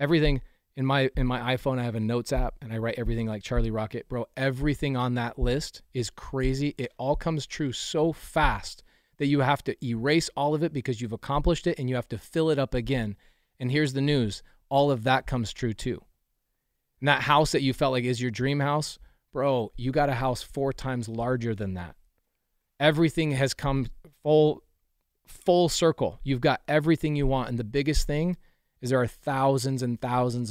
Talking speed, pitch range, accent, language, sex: 205 wpm, 115-140 Hz, American, English, male